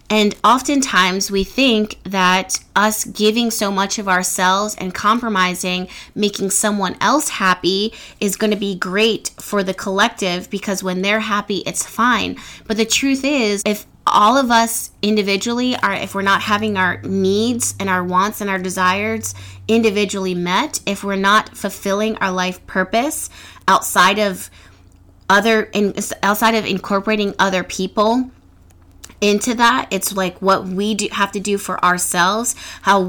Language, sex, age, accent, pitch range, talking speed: English, female, 20-39, American, 185-215 Hz, 150 wpm